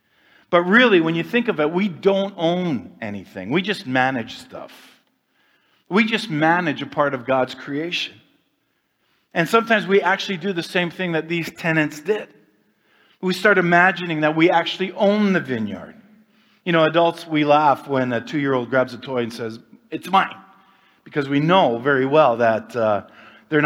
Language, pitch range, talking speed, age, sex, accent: English, 130-185 Hz, 175 wpm, 50-69, male, American